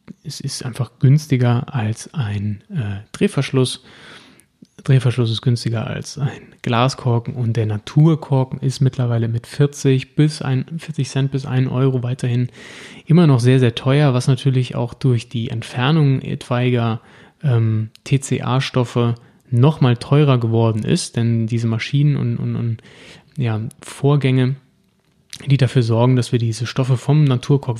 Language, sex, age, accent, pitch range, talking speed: German, male, 20-39, German, 120-140 Hz, 140 wpm